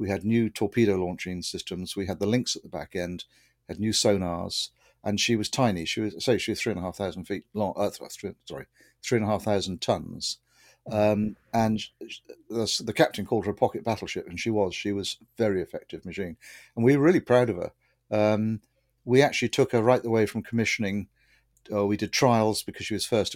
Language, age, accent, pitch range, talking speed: English, 50-69, British, 95-115 Hz, 220 wpm